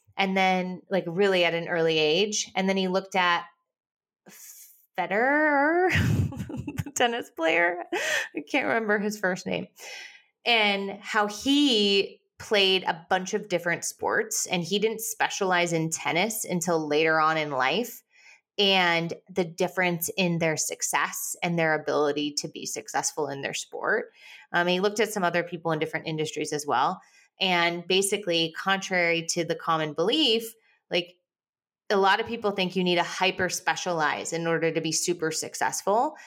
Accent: American